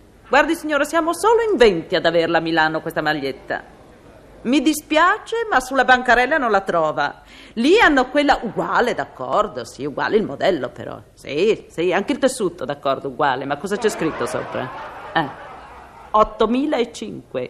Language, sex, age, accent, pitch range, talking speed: Italian, female, 40-59, native, 165-275 Hz, 150 wpm